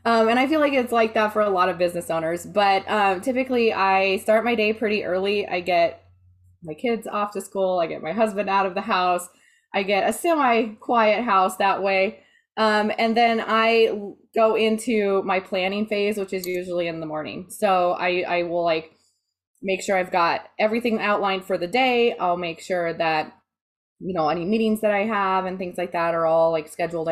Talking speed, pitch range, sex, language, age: 210 wpm, 165-210 Hz, female, English, 20-39